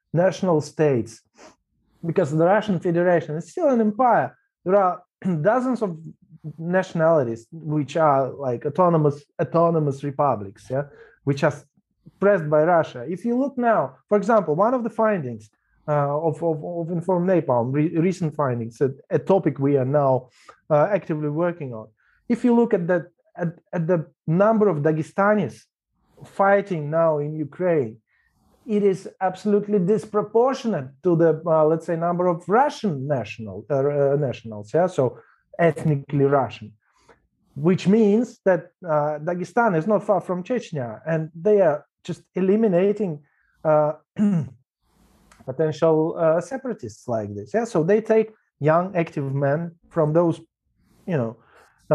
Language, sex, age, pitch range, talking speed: English, male, 30-49, 145-195 Hz, 145 wpm